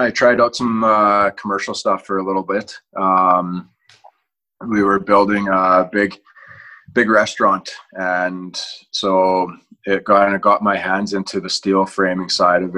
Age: 20-39